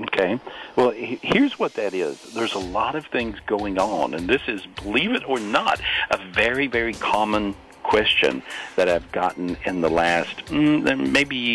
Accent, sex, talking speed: American, male, 165 wpm